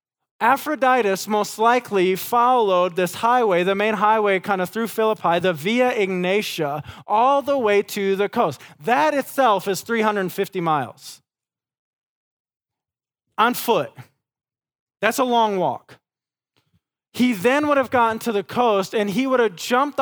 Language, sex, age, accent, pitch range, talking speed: English, male, 20-39, American, 180-240 Hz, 140 wpm